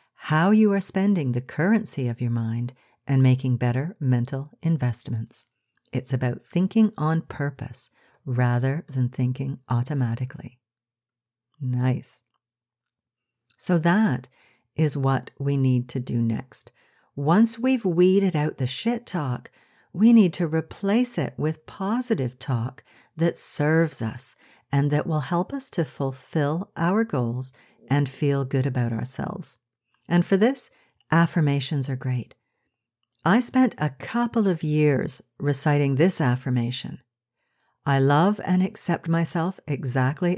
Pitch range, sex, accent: 125-170 Hz, female, American